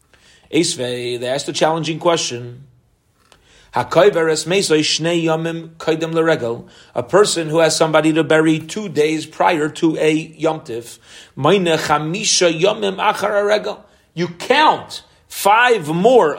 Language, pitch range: English, 150-205 Hz